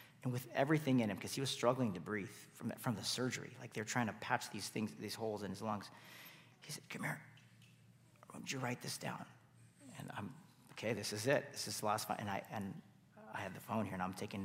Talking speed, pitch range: 245 wpm, 105-135 Hz